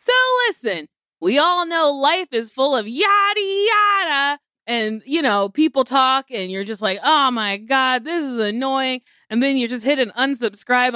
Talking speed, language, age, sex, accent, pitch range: 180 wpm, English, 20-39, female, American, 245-350 Hz